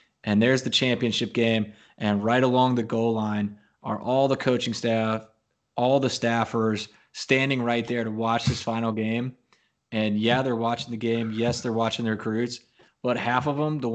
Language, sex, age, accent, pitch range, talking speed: English, male, 20-39, American, 110-125 Hz, 185 wpm